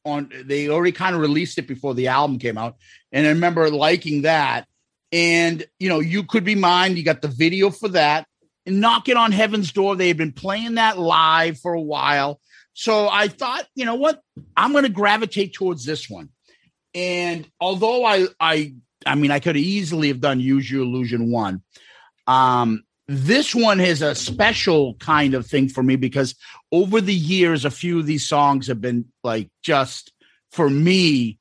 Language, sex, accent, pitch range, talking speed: English, male, American, 140-200 Hz, 185 wpm